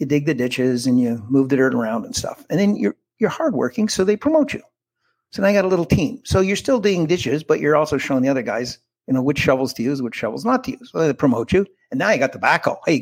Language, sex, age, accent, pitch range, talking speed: English, male, 60-79, American, 140-200 Hz, 290 wpm